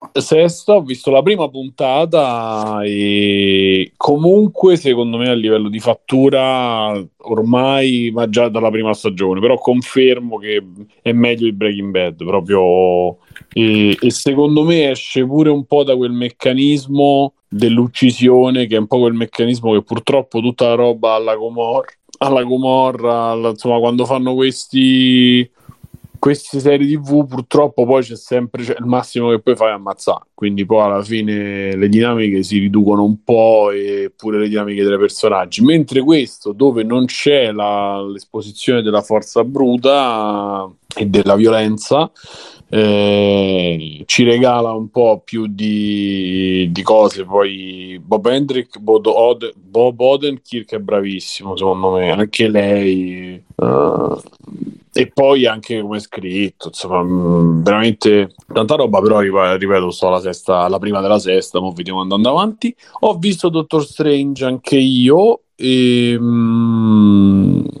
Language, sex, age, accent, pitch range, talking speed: Italian, male, 30-49, native, 100-130 Hz, 140 wpm